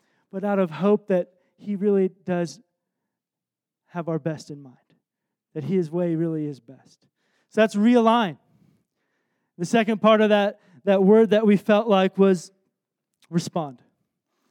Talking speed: 145 wpm